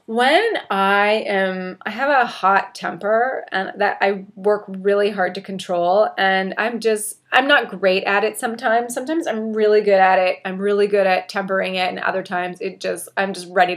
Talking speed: 195 wpm